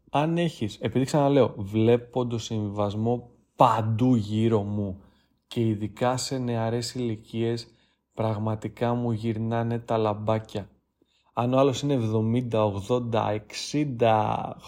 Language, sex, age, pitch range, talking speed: Greek, male, 20-39, 110-155 Hz, 110 wpm